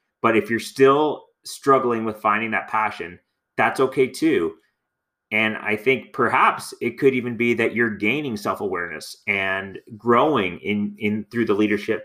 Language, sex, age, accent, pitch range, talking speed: English, male, 30-49, American, 100-120 Hz, 155 wpm